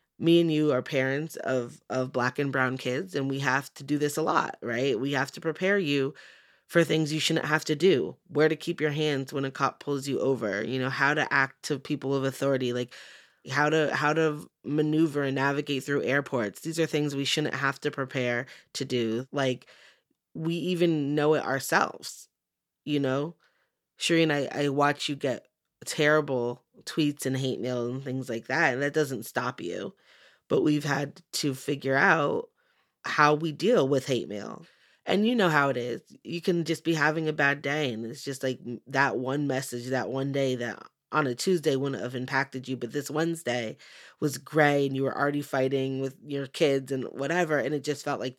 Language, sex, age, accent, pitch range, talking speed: English, female, 20-39, American, 130-155 Hz, 205 wpm